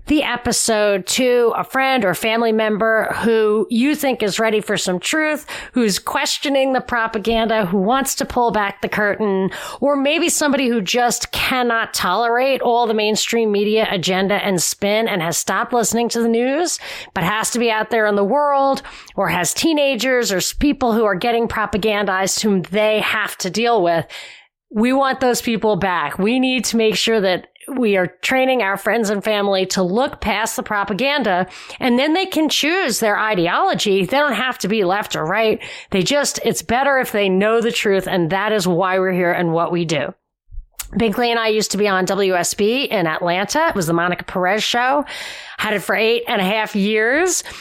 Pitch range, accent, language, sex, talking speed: 200-245 Hz, American, English, female, 195 wpm